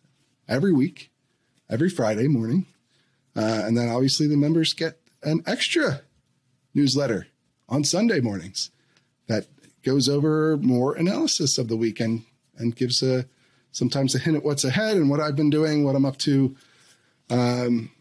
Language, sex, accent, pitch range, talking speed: English, male, American, 125-155 Hz, 150 wpm